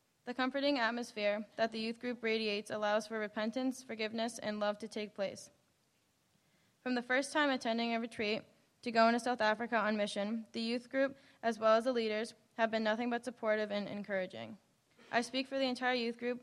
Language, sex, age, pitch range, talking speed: English, female, 10-29, 215-240 Hz, 195 wpm